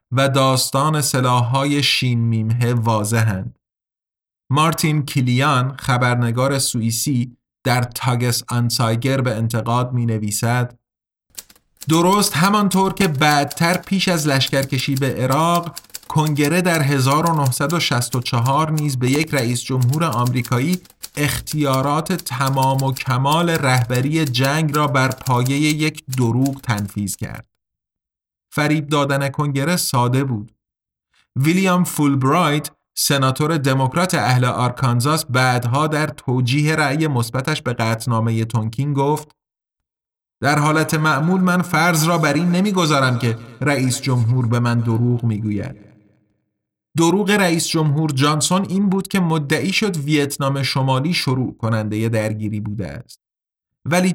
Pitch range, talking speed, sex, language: 120-155 Hz, 115 wpm, male, Persian